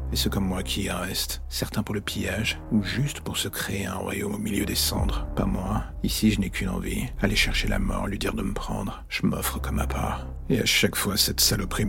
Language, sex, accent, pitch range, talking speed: French, male, French, 75-100 Hz, 245 wpm